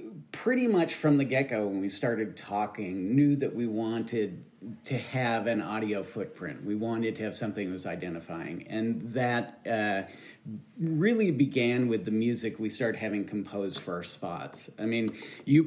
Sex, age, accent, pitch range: male, 40-59, American, 110-140 Hz